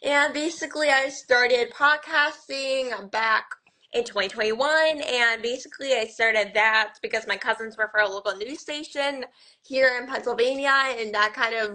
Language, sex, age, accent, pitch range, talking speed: English, female, 10-29, American, 210-270 Hz, 150 wpm